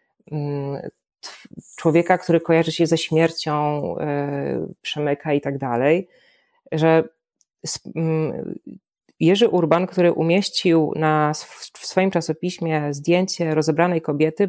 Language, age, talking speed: Polish, 30-49, 90 wpm